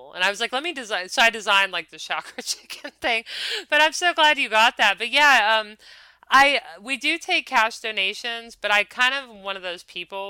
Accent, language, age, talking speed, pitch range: American, English, 30-49, 225 wpm, 165-210 Hz